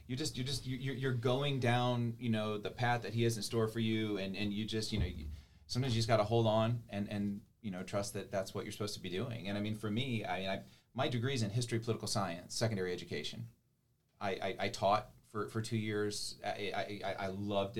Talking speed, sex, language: 245 wpm, male, English